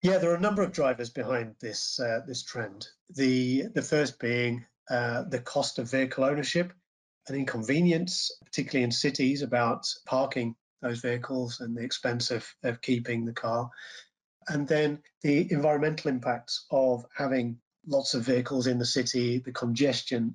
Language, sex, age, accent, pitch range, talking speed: English, male, 40-59, British, 125-155 Hz, 160 wpm